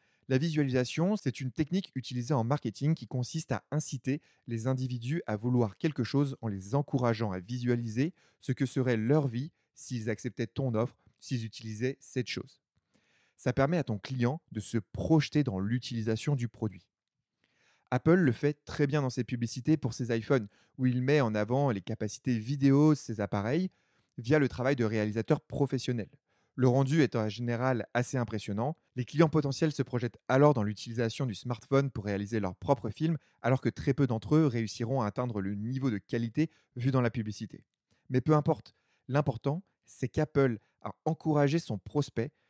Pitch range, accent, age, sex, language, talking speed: 115-140 Hz, French, 30-49, male, French, 175 wpm